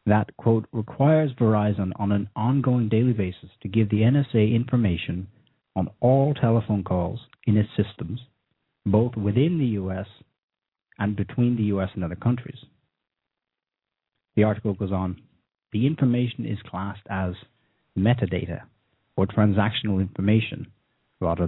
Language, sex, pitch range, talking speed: English, male, 95-125 Hz, 130 wpm